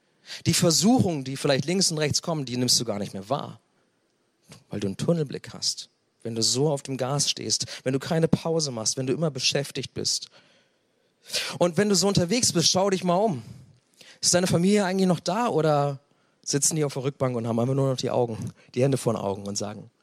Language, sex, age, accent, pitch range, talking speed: German, male, 40-59, German, 120-155 Hz, 220 wpm